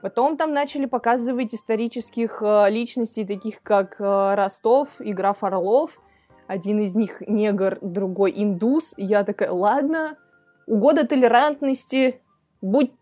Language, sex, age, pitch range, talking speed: Russian, female, 20-39, 205-260 Hz, 110 wpm